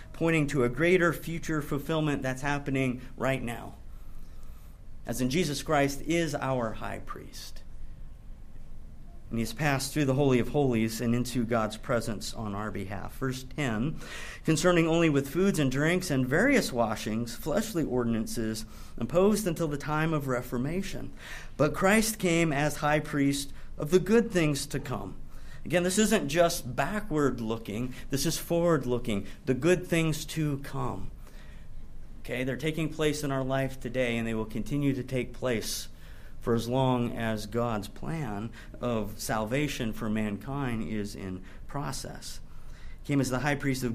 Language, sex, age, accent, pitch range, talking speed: English, male, 50-69, American, 115-150 Hz, 155 wpm